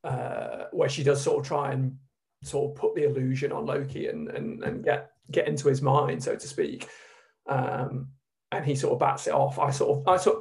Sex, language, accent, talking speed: male, English, British, 230 wpm